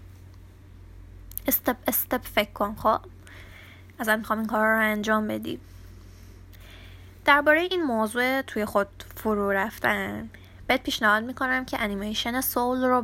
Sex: female